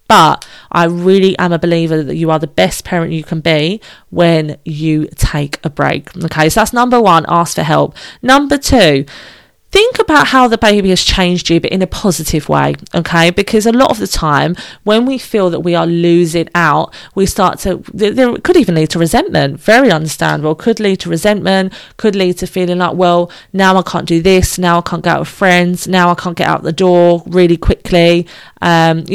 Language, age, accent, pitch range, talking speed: English, 30-49, British, 165-205 Hz, 205 wpm